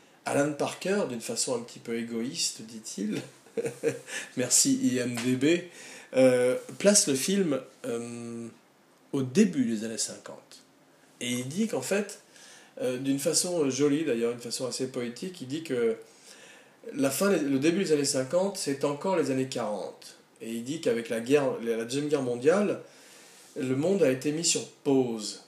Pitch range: 120-150 Hz